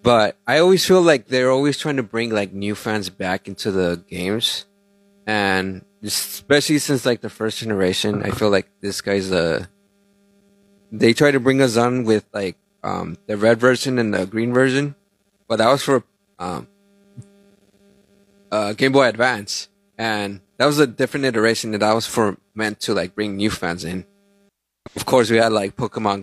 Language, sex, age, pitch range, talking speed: English, male, 20-39, 100-150 Hz, 180 wpm